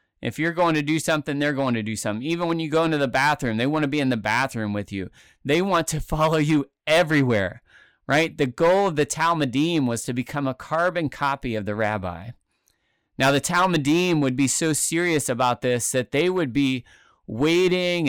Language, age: English, 30-49